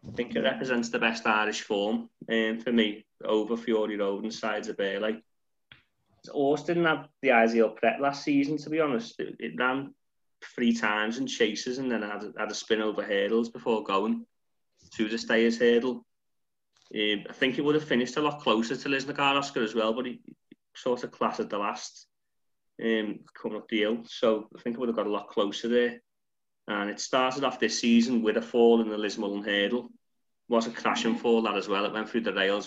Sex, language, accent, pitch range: male, English, British, 105-130 Hz